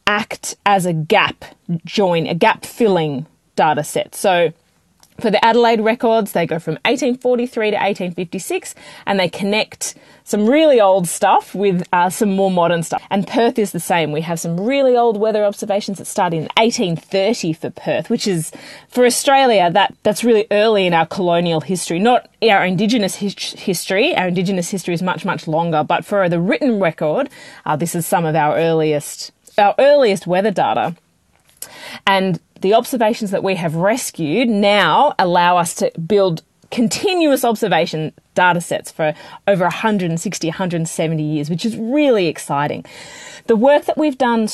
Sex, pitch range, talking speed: female, 175-230 Hz, 165 wpm